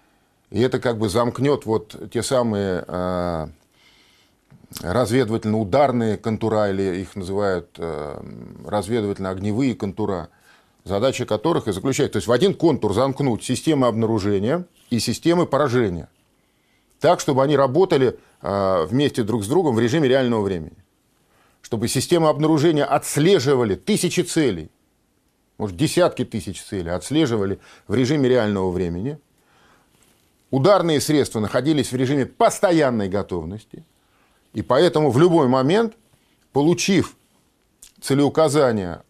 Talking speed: 110 wpm